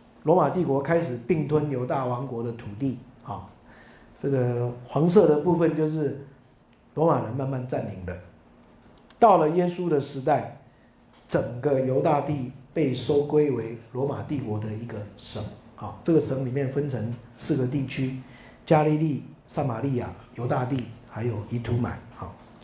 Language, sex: Chinese, male